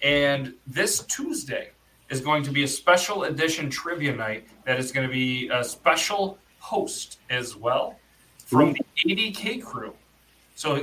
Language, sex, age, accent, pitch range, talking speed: English, male, 30-49, American, 130-160 Hz, 145 wpm